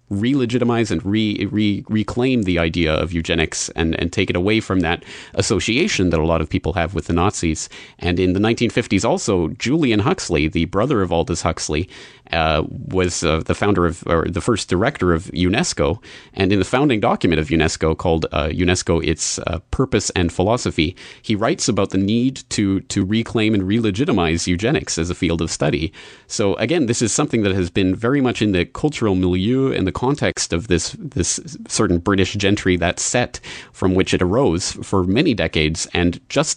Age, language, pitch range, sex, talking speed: 30-49, English, 85-105 Hz, male, 185 wpm